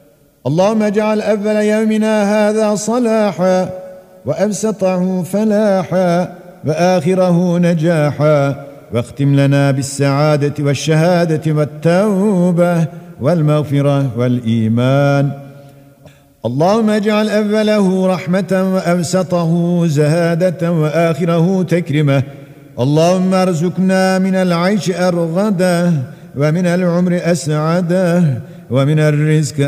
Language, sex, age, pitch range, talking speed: Turkish, male, 50-69, 150-190 Hz, 70 wpm